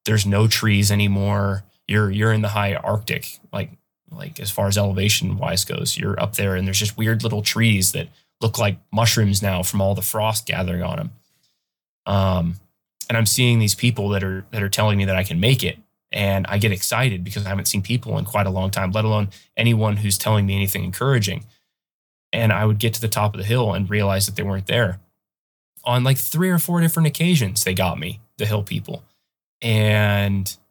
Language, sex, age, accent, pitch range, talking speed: English, male, 20-39, American, 100-115 Hz, 210 wpm